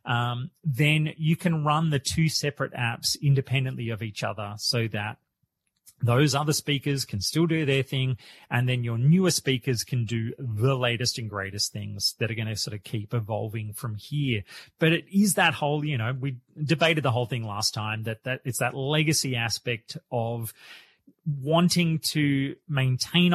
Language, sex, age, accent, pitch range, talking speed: English, male, 30-49, Australian, 120-150 Hz, 175 wpm